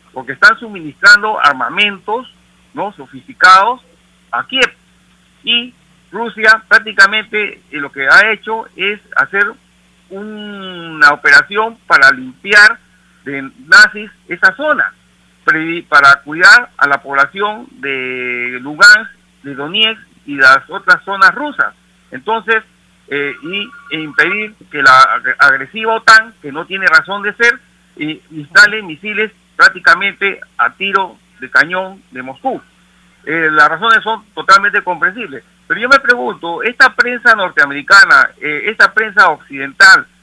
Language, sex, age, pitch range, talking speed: Spanish, male, 50-69, 155-225 Hz, 120 wpm